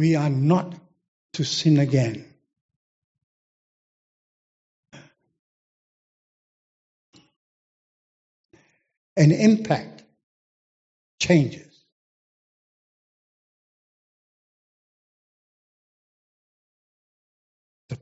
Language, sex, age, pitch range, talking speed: English, male, 60-79, 130-170 Hz, 35 wpm